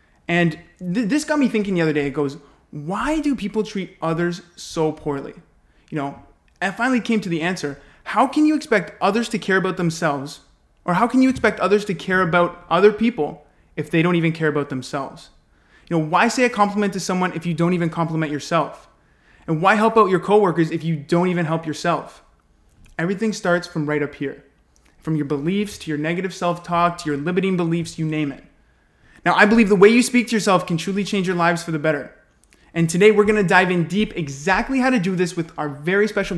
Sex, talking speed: male, 220 wpm